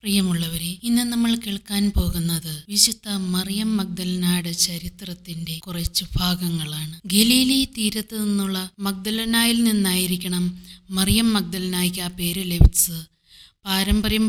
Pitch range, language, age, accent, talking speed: 185-230 Hz, Malayalam, 20-39, native, 85 wpm